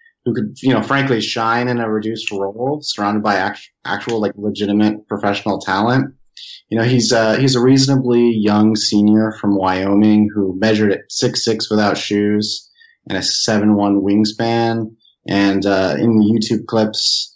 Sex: male